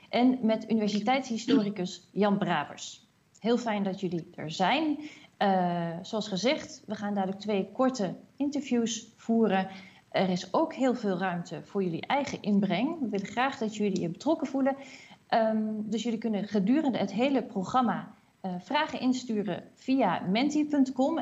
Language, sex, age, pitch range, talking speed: Dutch, female, 40-59, 190-250 Hz, 145 wpm